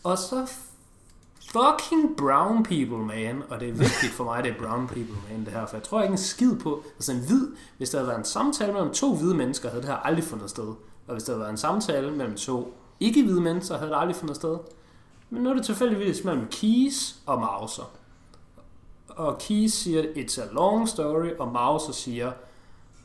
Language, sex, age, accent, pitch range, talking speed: Danish, male, 30-49, native, 120-185 Hz, 215 wpm